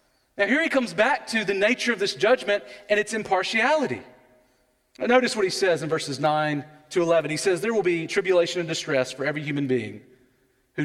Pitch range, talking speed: 130-190 Hz, 200 wpm